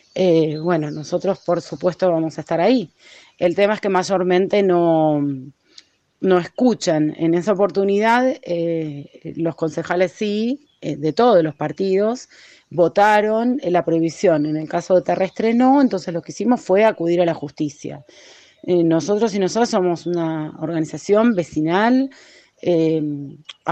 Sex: female